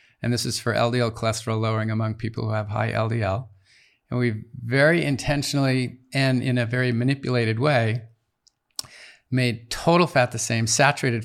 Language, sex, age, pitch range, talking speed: English, male, 50-69, 110-130 Hz, 155 wpm